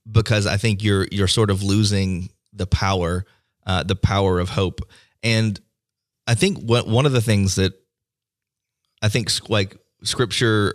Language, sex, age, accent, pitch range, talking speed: English, male, 30-49, American, 100-115 Hz, 155 wpm